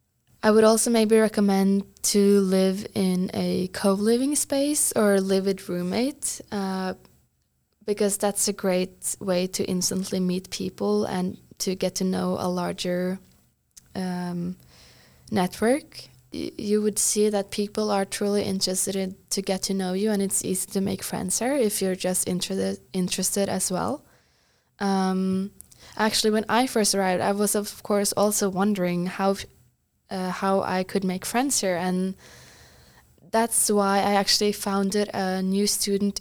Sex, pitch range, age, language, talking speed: female, 185-210 Hz, 10-29, English, 155 wpm